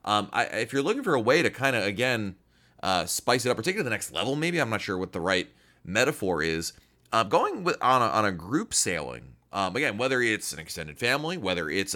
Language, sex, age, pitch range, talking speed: English, male, 30-49, 95-140 Hz, 230 wpm